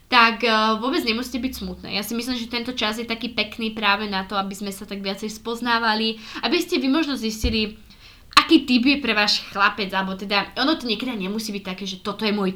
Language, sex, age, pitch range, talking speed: Slovak, female, 20-39, 200-230 Hz, 220 wpm